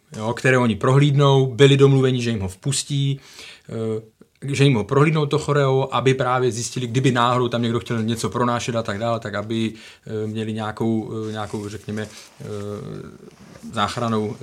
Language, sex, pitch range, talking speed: Czech, male, 110-130 Hz, 150 wpm